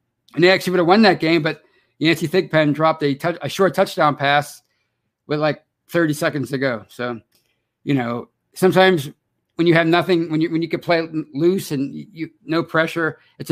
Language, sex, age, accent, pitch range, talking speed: English, male, 50-69, American, 135-165 Hz, 195 wpm